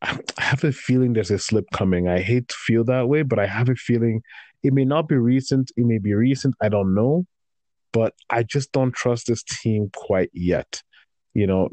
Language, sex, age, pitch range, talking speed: English, male, 30-49, 105-125 Hz, 215 wpm